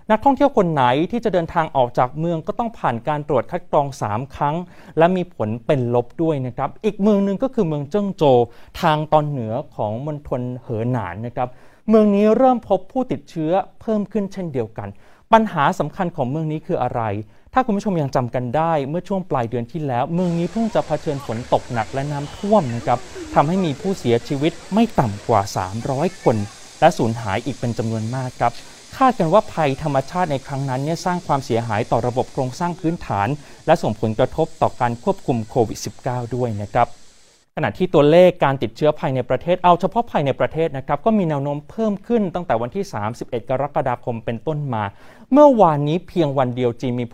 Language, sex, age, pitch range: Thai, male, 30-49, 125-175 Hz